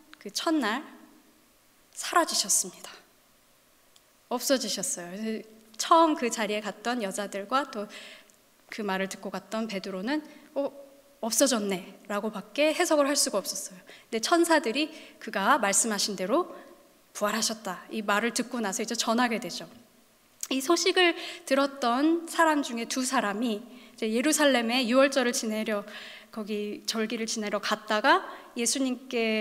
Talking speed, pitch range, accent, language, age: 100 wpm, 205-285 Hz, Korean, English, 20-39